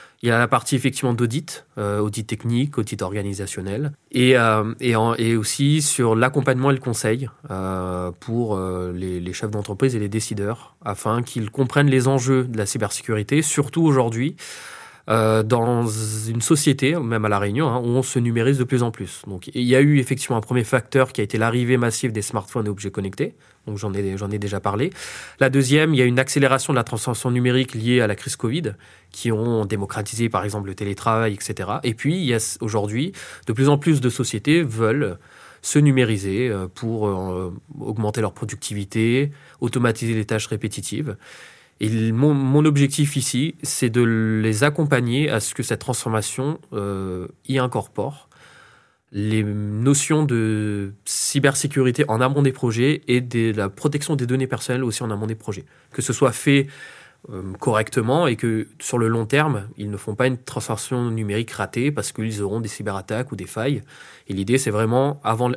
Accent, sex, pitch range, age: French, male, 105-130 Hz, 20-39